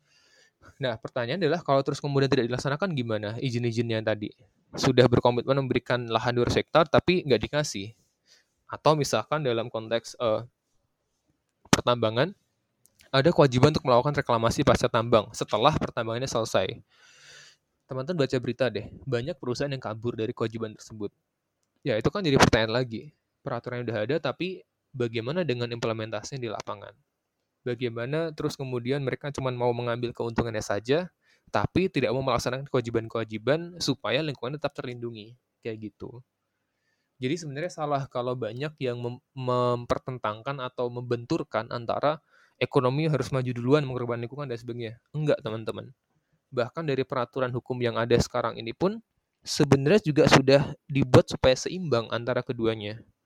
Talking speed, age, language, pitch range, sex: 140 wpm, 20-39, Indonesian, 115-140 Hz, male